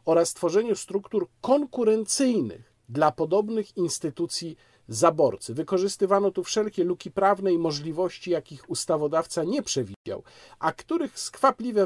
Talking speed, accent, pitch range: 110 wpm, native, 130-195 Hz